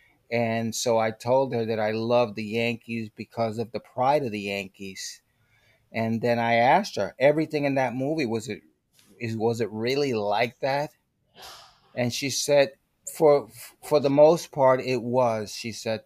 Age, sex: 30-49, male